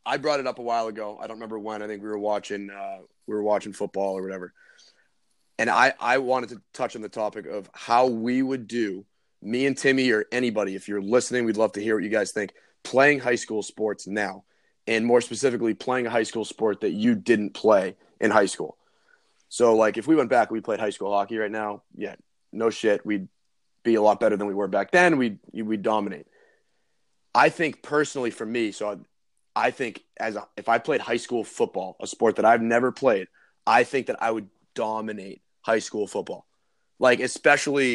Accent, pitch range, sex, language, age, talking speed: American, 105-130 Hz, male, English, 30-49, 220 wpm